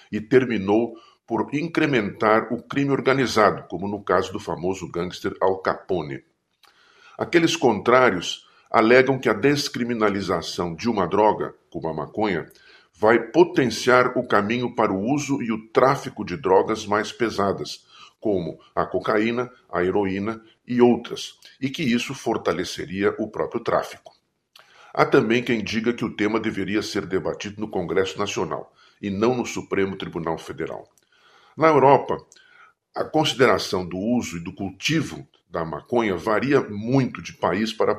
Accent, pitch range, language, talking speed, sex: Brazilian, 105-130 Hz, Portuguese, 140 wpm, male